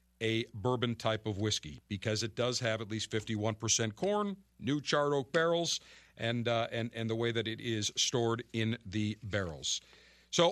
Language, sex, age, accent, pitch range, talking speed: English, male, 50-69, American, 115-160 Hz, 175 wpm